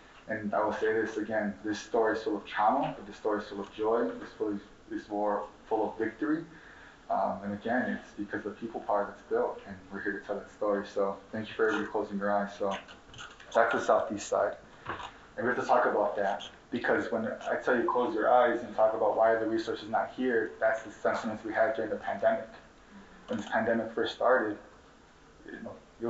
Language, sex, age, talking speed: English, male, 20-39, 220 wpm